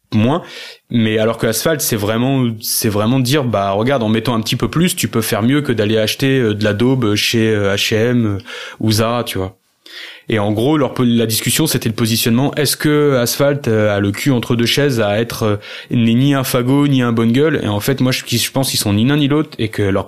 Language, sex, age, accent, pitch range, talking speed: French, male, 20-39, French, 110-135 Hz, 235 wpm